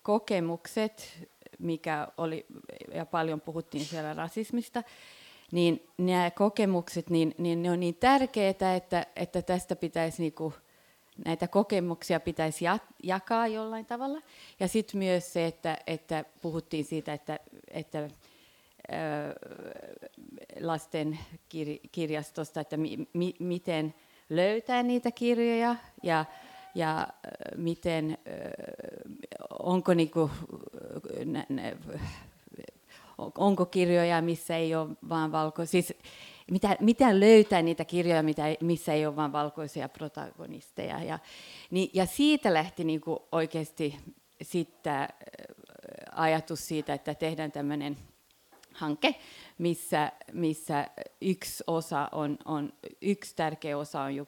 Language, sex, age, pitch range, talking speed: Finnish, female, 30-49, 155-185 Hz, 105 wpm